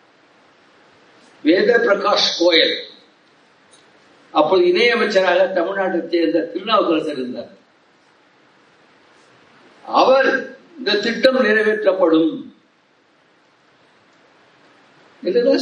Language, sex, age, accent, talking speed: Tamil, male, 60-79, native, 55 wpm